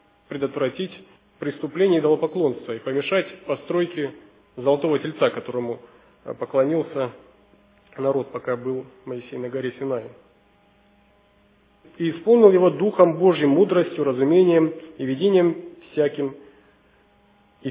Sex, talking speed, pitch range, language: male, 95 wpm, 135-170 Hz, Russian